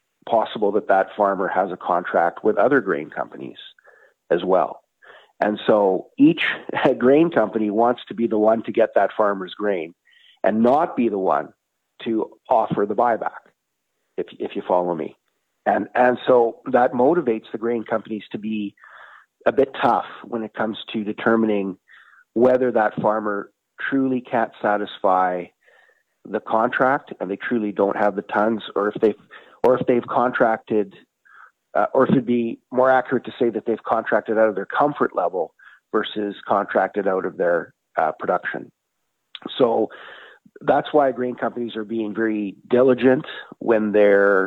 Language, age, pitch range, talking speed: English, 40-59, 105-125 Hz, 160 wpm